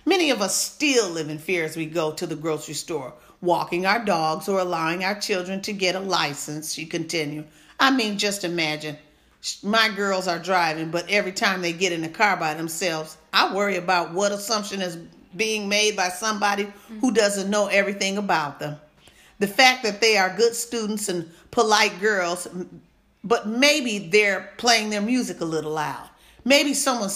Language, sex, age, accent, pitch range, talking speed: English, female, 40-59, American, 170-210 Hz, 180 wpm